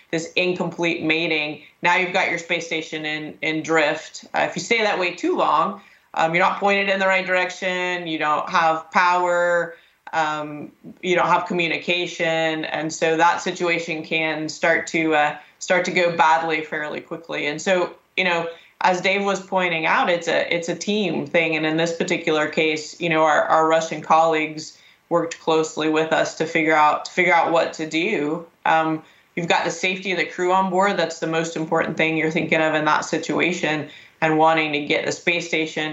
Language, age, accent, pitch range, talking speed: English, 20-39, American, 155-180 Hz, 195 wpm